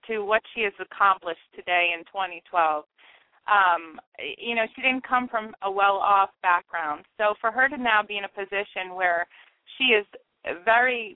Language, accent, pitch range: English, American, 185-225 Hz